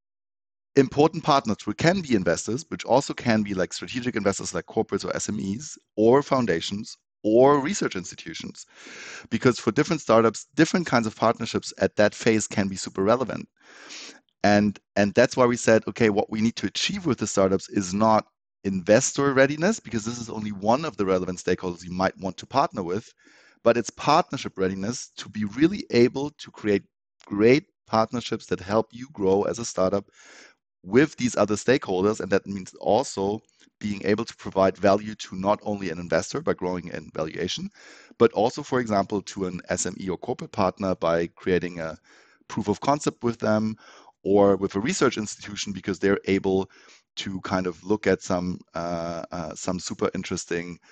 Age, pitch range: 30-49, 95-115 Hz